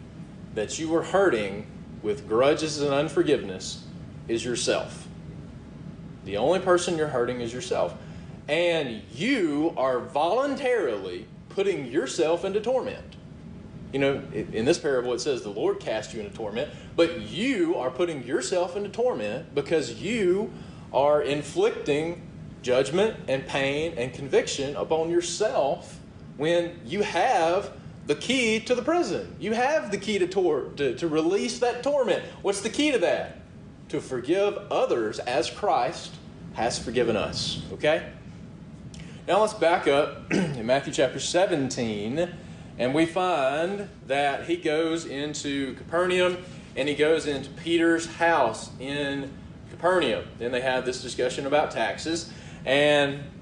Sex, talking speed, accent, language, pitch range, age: male, 135 wpm, American, English, 140-200 Hz, 30-49